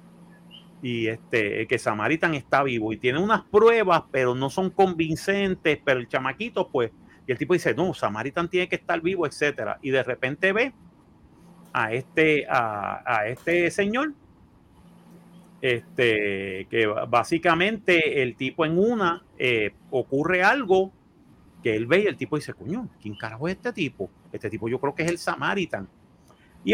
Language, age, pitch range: Spanish, 40-59, 130-185 Hz